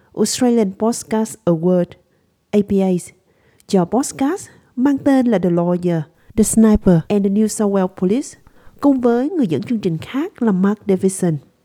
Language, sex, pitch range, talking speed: Vietnamese, female, 175-250 Hz, 150 wpm